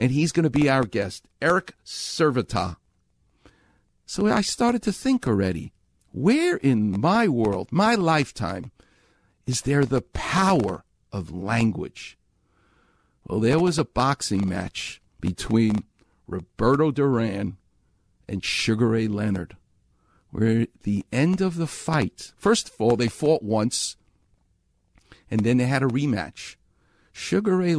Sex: male